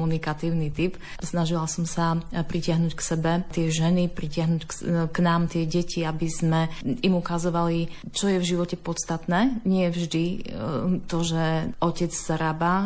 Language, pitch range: Slovak, 155-175 Hz